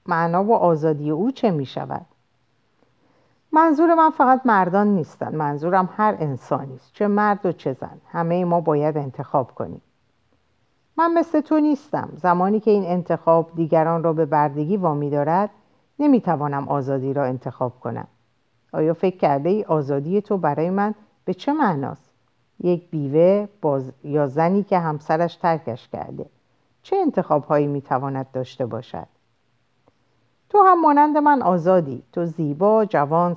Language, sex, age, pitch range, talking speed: Persian, female, 50-69, 145-225 Hz, 145 wpm